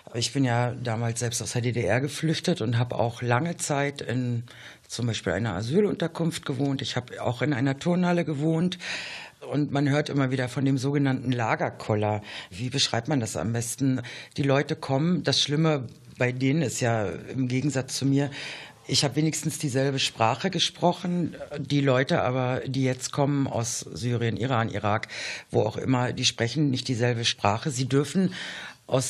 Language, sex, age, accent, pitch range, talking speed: German, female, 60-79, German, 125-155 Hz, 170 wpm